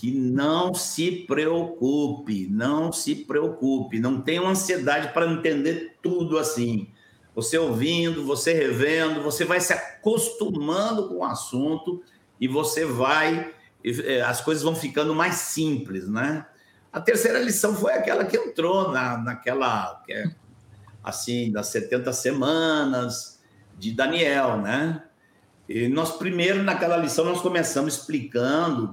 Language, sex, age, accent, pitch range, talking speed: Portuguese, male, 60-79, Brazilian, 125-175 Hz, 120 wpm